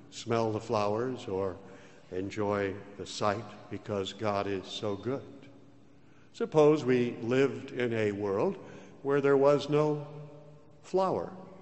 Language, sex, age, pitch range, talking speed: English, male, 60-79, 110-150 Hz, 120 wpm